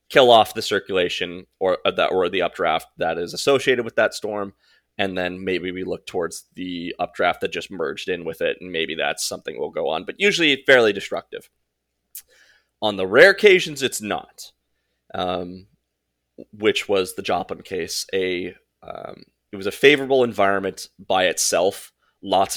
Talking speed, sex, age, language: 165 wpm, male, 20-39, English